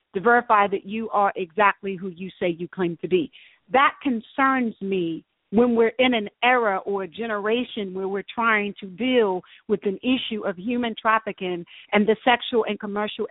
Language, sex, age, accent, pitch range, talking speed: English, female, 50-69, American, 205-265 Hz, 180 wpm